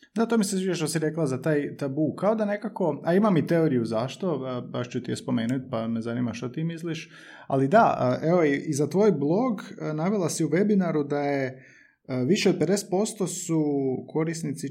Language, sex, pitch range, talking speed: Croatian, male, 130-175 Hz, 190 wpm